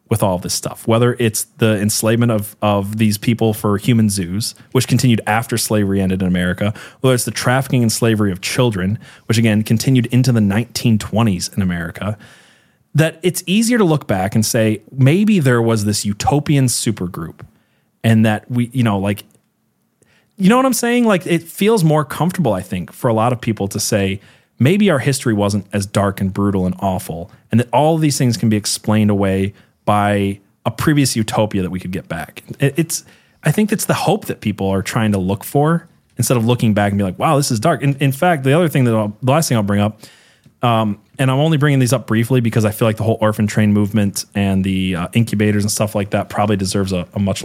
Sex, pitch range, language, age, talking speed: male, 105-130 Hz, English, 30-49, 220 wpm